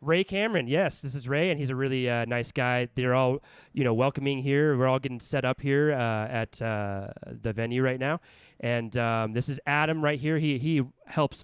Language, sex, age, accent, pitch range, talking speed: English, male, 20-39, American, 120-155 Hz, 220 wpm